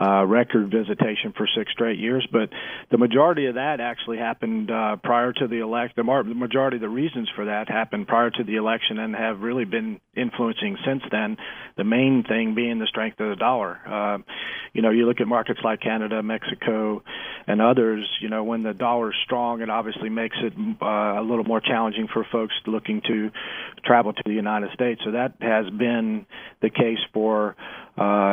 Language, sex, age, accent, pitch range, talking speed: English, male, 40-59, American, 110-130 Hz, 200 wpm